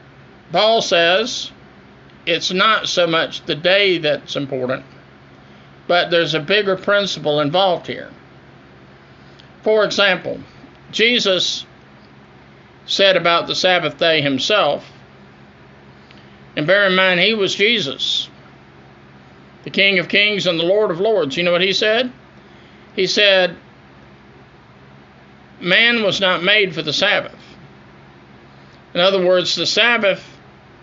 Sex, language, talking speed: male, English, 120 wpm